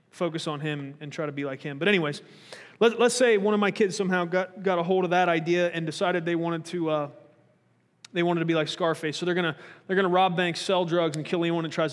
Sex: male